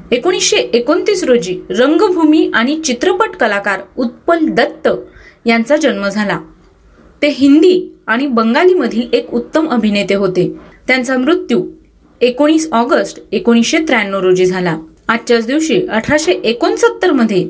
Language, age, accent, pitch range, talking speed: Marathi, 30-49, native, 225-315 Hz, 40 wpm